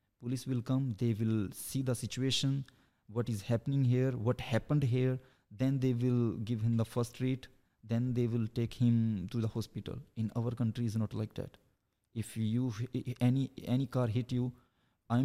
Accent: Indian